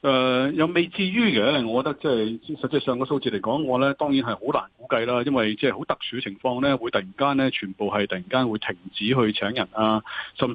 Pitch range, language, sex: 115-150 Hz, Chinese, male